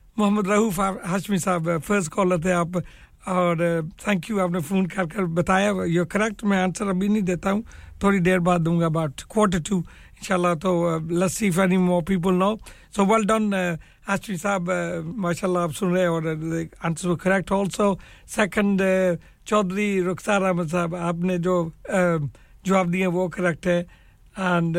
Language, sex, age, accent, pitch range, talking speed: English, male, 60-79, Indian, 175-200 Hz, 130 wpm